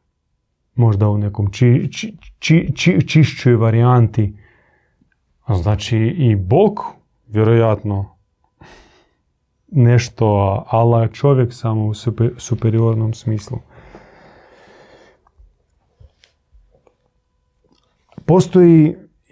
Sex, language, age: male, Croatian, 30-49